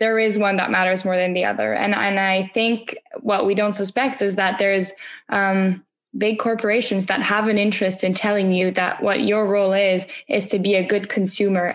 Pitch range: 195-230 Hz